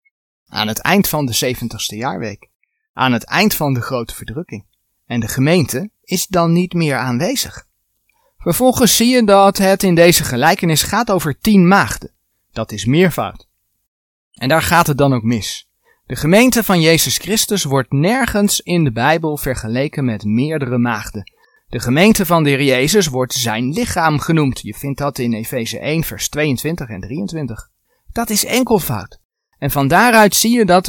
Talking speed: 170 wpm